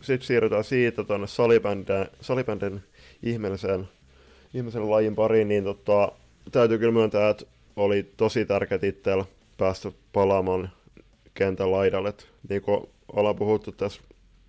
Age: 20-39